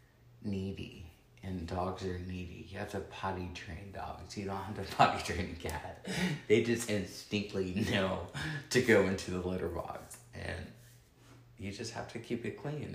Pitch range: 95-120 Hz